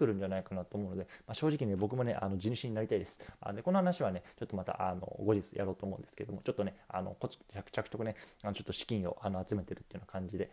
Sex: male